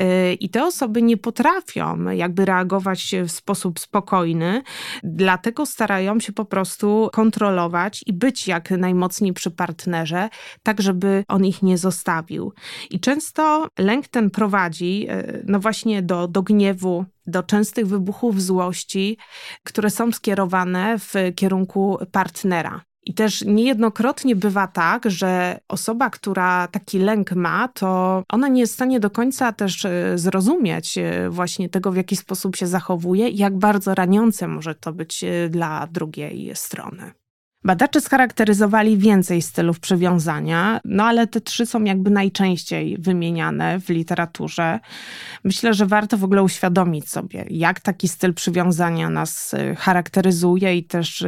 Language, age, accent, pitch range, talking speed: Polish, 20-39, native, 175-210 Hz, 135 wpm